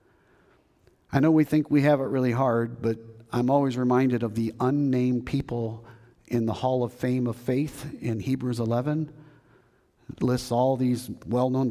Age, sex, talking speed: 40-59, male, 165 wpm